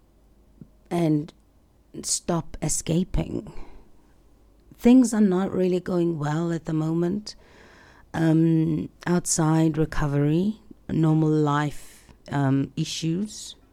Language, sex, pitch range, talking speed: English, female, 150-180 Hz, 85 wpm